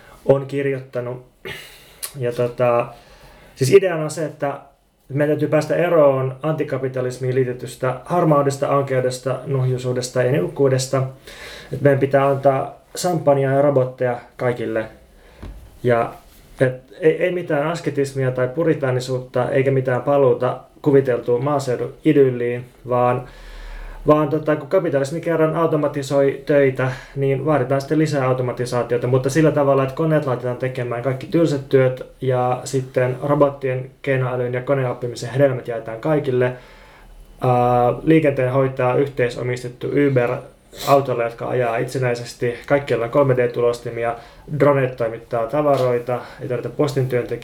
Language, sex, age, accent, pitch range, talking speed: Finnish, male, 20-39, native, 125-145 Hz, 110 wpm